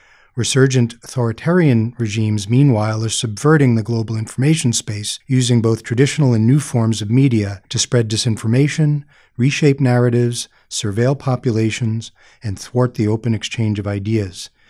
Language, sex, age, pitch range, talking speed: English, male, 40-59, 110-135 Hz, 130 wpm